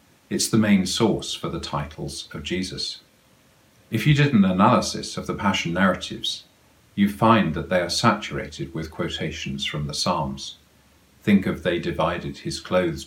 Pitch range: 75-105 Hz